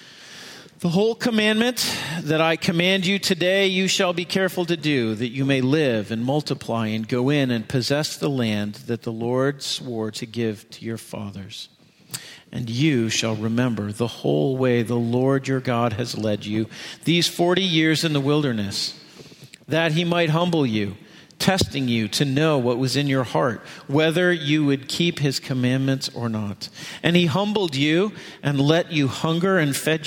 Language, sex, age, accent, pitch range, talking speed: English, male, 50-69, American, 120-170 Hz, 175 wpm